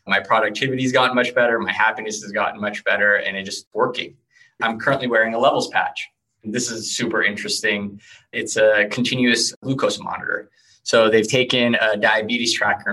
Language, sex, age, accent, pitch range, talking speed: English, male, 20-39, American, 100-125 Hz, 175 wpm